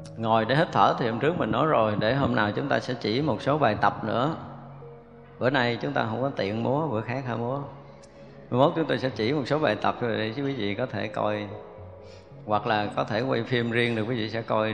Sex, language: male, Vietnamese